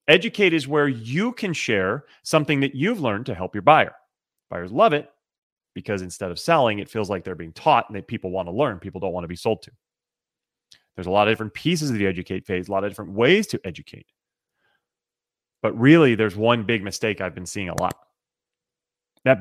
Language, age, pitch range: English, 30-49, 105-160 Hz